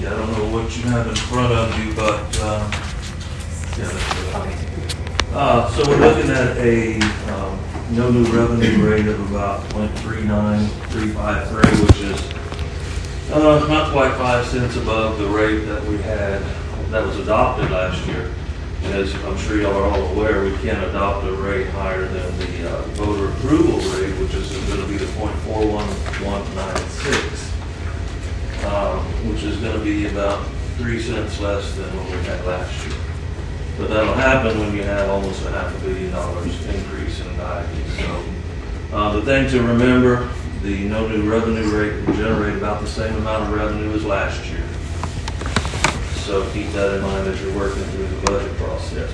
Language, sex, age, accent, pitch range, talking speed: English, male, 40-59, American, 85-105 Hz, 165 wpm